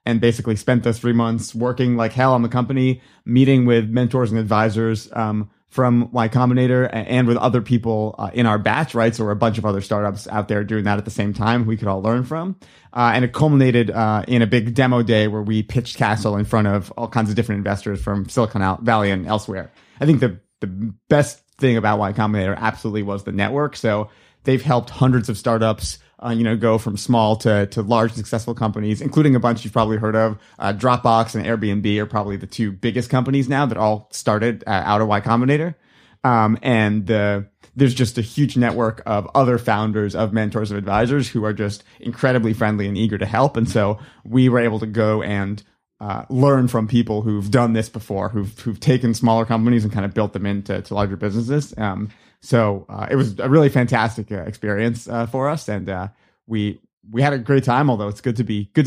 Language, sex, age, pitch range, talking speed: English, male, 30-49, 105-125 Hz, 220 wpm